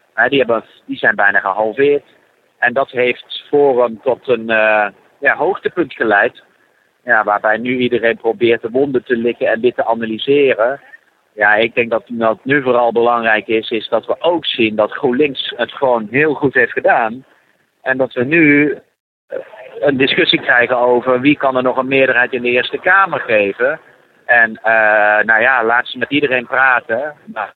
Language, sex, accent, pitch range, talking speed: Dutch, male, Dutch, 110-135 Hz, 175 wpm